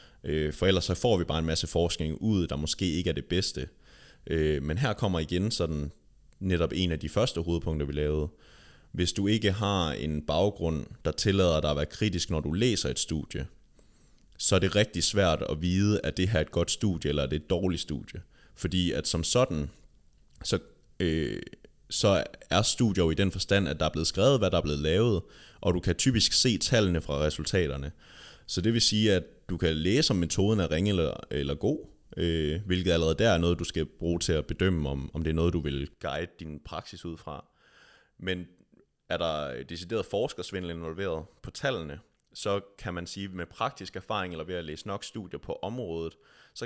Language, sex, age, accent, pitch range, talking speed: English, male, 30-49, Danish, 80-100 Hz, 205 wpm